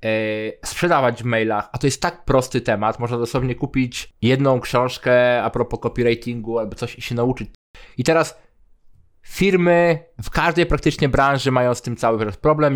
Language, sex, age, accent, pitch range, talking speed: Polish, male, 20-39, native, 115-140 Hz, 165 wpm